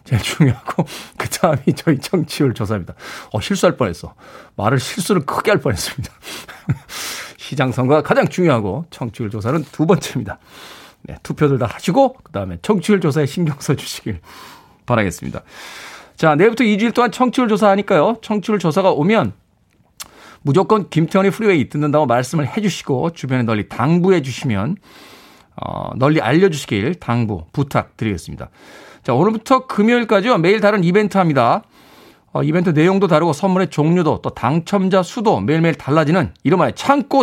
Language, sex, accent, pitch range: Korean, male, native, 135-200 Hz